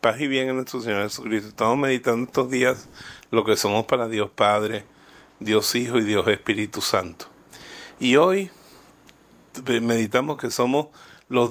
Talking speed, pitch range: 150 wpm, 105-130 Hz